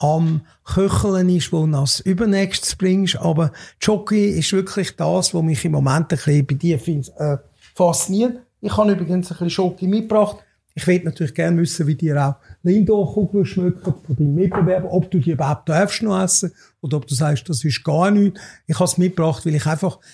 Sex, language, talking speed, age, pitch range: male, German, 195 wpm, 50-69, 150-180 Hz